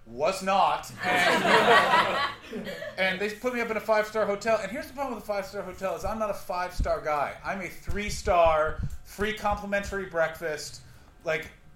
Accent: American